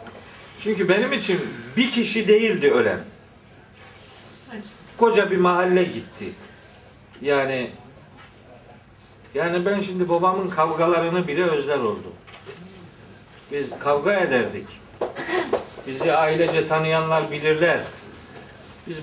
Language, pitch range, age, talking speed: Turkish, 145-205 Hz, 50-69, 90 wpm